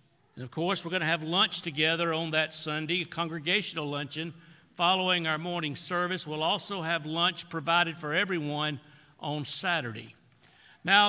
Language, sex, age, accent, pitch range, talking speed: English, male, 60-79, American, 150-200 Hz, 155 wpm